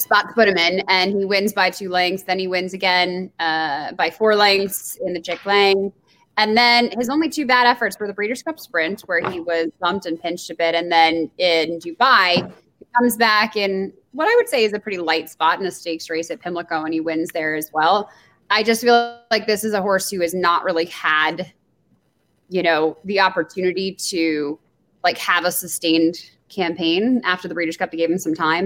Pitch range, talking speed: 165-205 Hz, 220 wpm